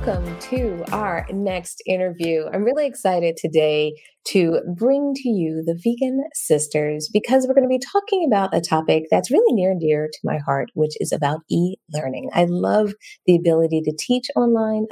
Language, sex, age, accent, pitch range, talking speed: English, female, 30-49, American, 160-245 Hz, 175 wpm